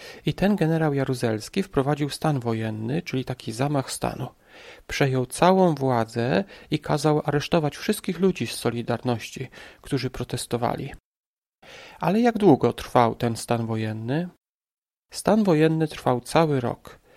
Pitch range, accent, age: 125-165 Hz, native, 40-59